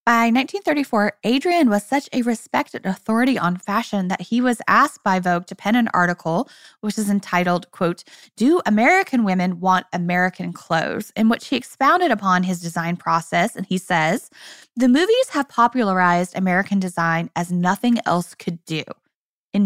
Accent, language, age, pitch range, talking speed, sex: American, English, 10-29, 185-255 Hz, 160 wpm, female